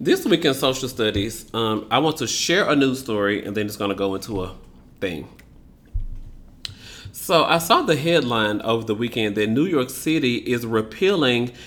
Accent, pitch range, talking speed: American, 115-160 Hz, 185 wpm